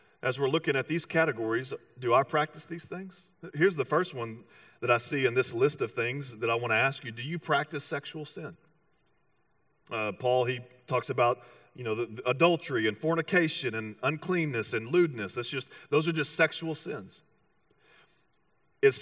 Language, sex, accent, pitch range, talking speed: English, male, American, 135-175 Hz, 185 wpm